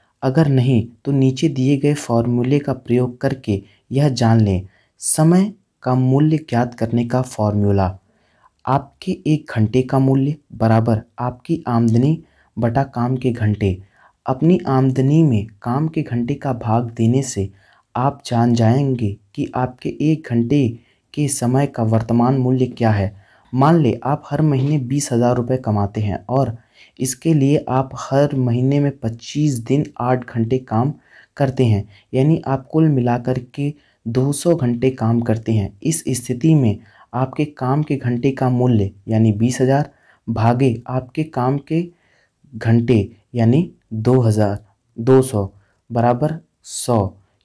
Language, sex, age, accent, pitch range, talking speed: Hindi, male, 30-49, native, 115-140 Hz, 140 wpm